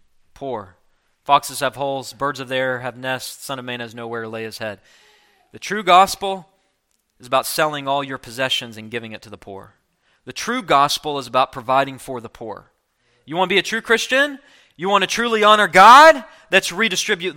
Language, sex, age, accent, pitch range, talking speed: English, male, 20-39, American, 150-210 Hz, 195 wpm